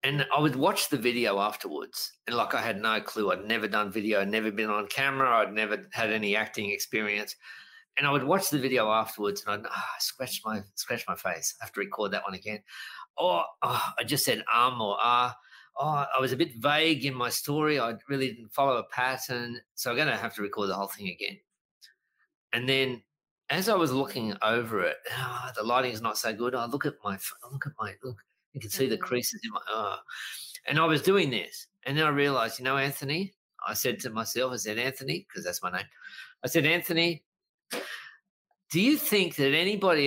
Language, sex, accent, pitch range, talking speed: English, male, Australian, 115-165 Hz, 220 wpm